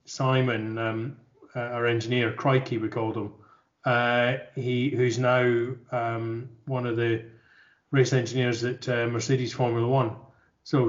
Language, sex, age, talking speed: English, male, 30-49, 140 wpm